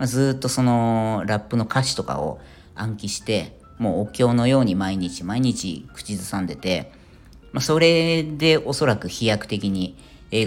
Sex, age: female, 40-59